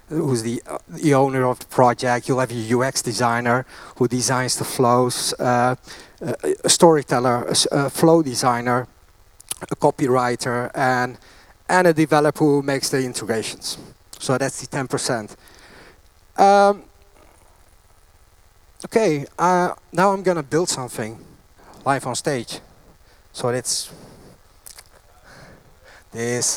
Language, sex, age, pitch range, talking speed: English, male, 30-49, 105-140 Hz, 120 wpm